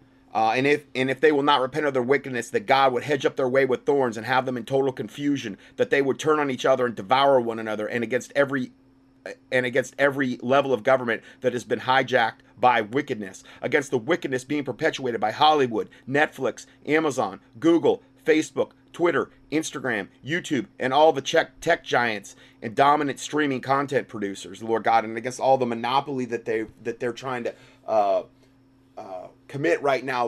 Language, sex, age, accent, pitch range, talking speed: English, male, 30-49, American, 120-140 Hz, 190 wpm